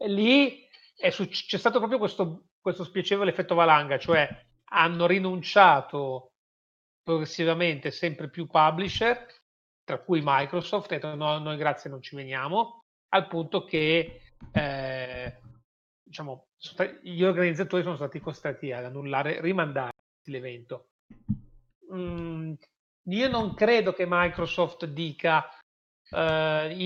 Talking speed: 105 wpm